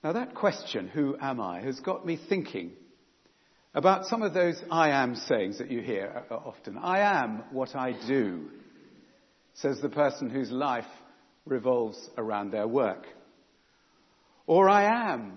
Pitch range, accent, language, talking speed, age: 135-185 Hz, British, English, 150 wpm, 50-69